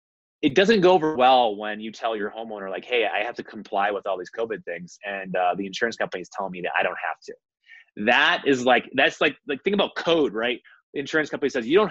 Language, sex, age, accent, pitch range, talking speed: English, male, 20-39, American, 115-175 Hz, 250 wpm